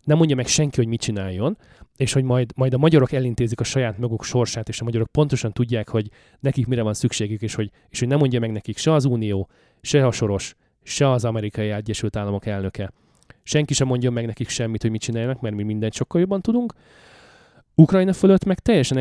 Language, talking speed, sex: Hungarian, 210 wpm, male